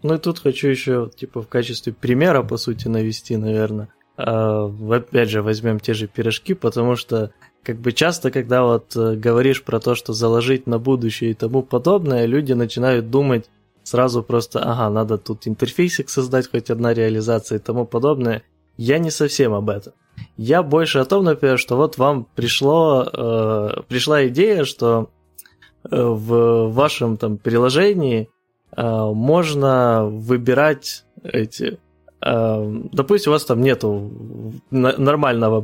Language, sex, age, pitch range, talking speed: Ukrainian, male, 20-39, 110-135 Hz, 140 wpm